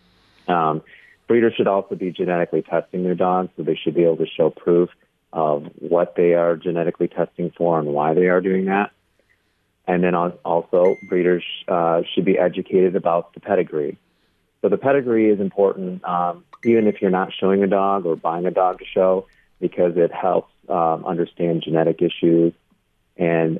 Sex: male